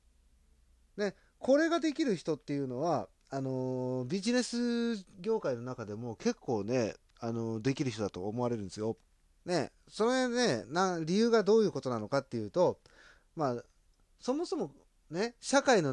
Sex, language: male, Japanese